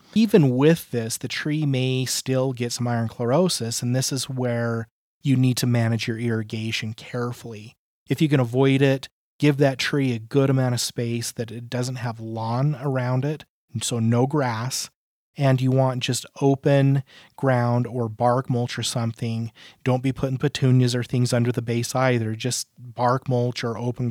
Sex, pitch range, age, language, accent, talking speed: male, 115-135 Hz, 30-49, English, American, 175 wpm